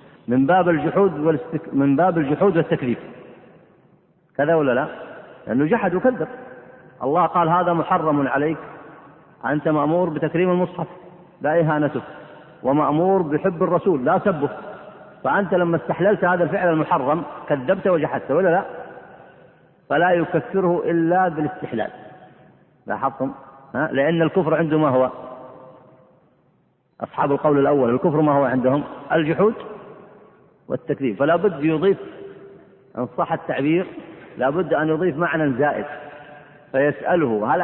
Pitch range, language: 140-180 Hz, Arabic